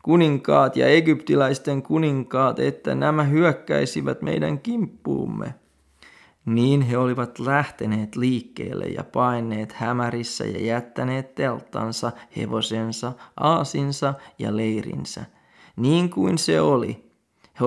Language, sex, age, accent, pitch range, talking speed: Finnish, male, 20-39, native, 110-135 Hz, 100 wpm